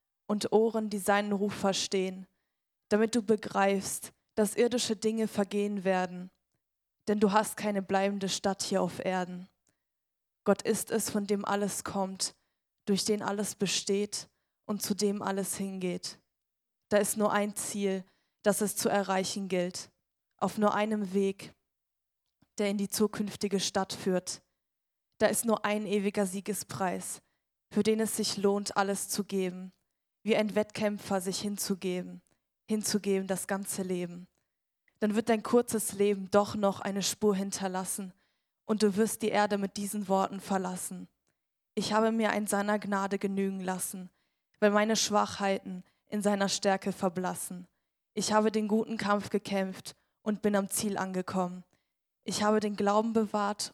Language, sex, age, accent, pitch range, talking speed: German, female, 20-39, German, 190-210 Hz, 145 wpm